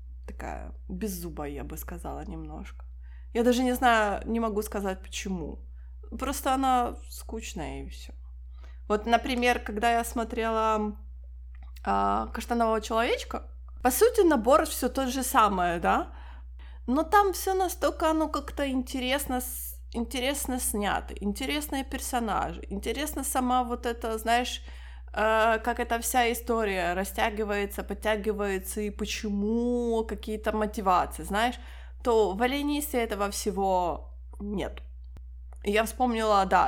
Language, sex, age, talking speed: Ukrainian, female, 20-39, 115 wpm